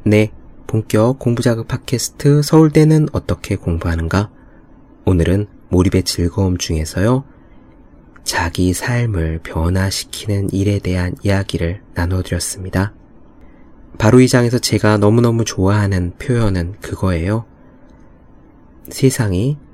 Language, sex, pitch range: Korean, male, 90-125 Hz